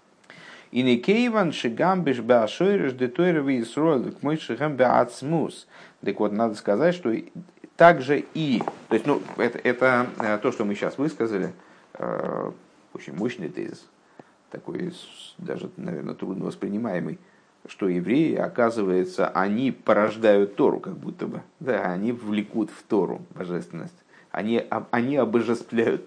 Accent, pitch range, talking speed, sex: native, 120-180 Hz, 100 wpm, male